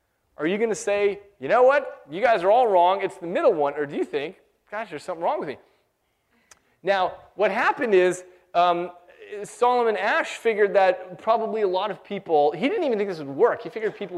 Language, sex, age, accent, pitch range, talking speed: English, male, 30-49, American, 165-255 Hz, 215 wpm